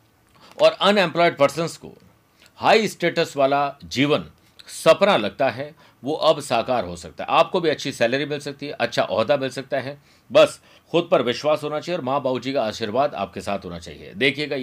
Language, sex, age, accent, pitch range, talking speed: Hindi, male, 50-69, native, 105-155 Hz, 190 wpm